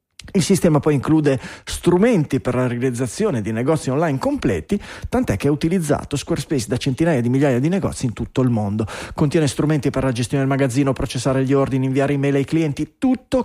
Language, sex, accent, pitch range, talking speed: Italian, male, native, 130-190 Hz, 185 wpm